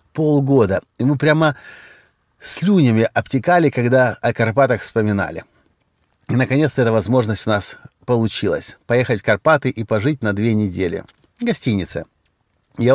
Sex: male